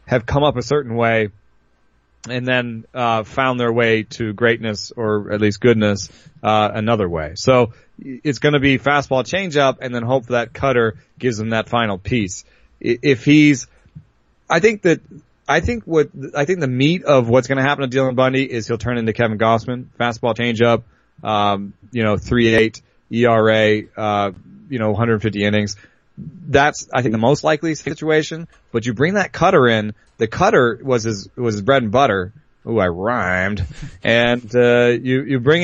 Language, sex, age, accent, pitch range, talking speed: English, male, 30-49, American, 105-130 Hz, 185 wpm